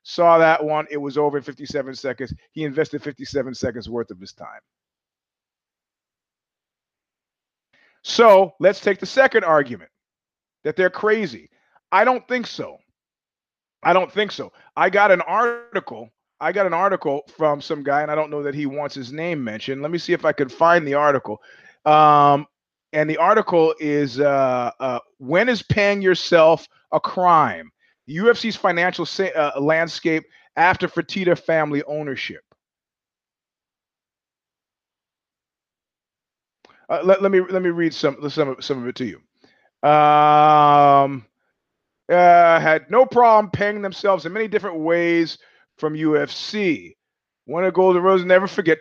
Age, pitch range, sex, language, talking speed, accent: 30-49, 145-190 Hz, male, English, 150 wpm, American